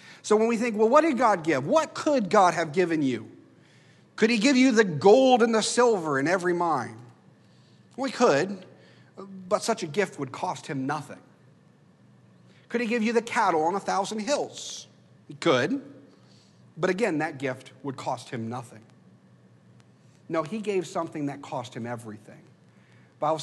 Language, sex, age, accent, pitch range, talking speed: English, male, 50-69, American, 130-205 Hz, 175 wpm